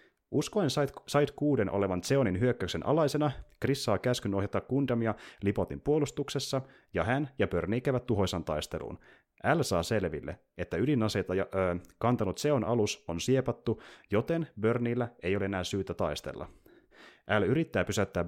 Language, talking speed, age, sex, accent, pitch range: Finnish, 130 wpm, 30-49, male, native, 90-125 Hz